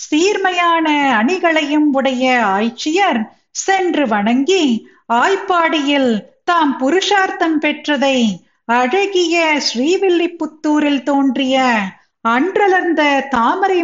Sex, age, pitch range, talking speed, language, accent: female, 50-69, 250-345 Hz, 65 wpm, Tamil, native